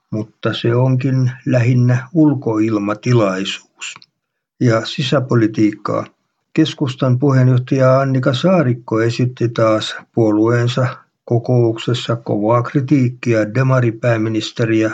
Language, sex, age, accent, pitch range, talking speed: Finnish, male, 60-79, native, 110-130 Hz, 70 wpm